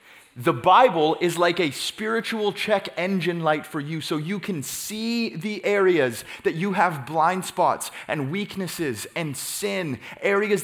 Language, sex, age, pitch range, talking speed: English, male, 30-49, 125-175 Hz, 150 wpm